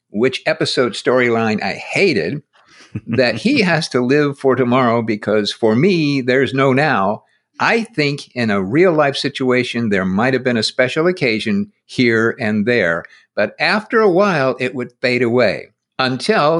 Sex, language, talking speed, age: male, English, 160 wpm, 50-69